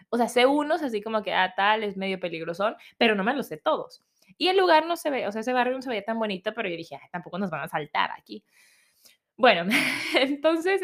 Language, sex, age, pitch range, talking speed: Spanish, female, 20-39, 205-265 Hz, 250 wpm